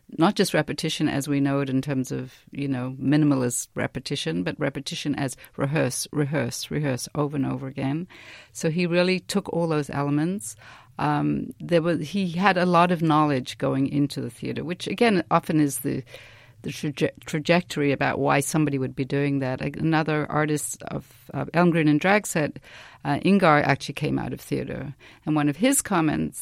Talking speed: 175 wpm